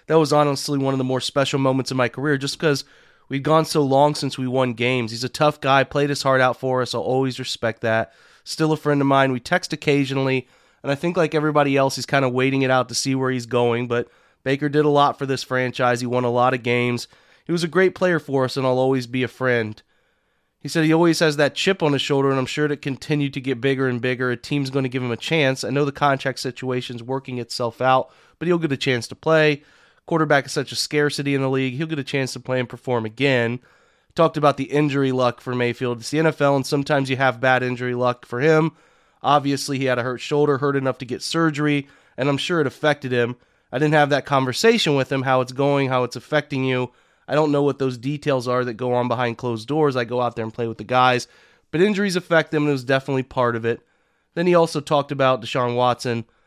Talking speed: 255 wpm